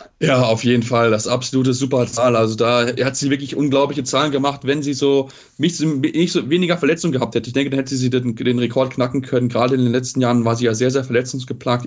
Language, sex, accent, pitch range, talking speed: German, male, German, 120-140 Hz, 230 wpm